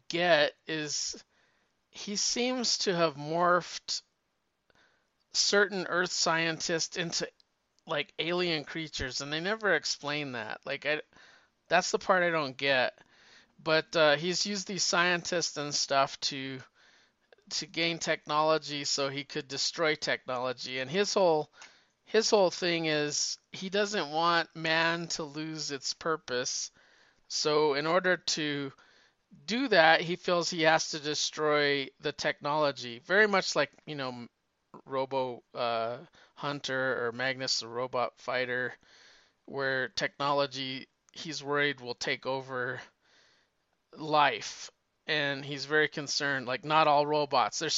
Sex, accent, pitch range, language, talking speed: male, American, 135-170 Hz, English, 130 wpm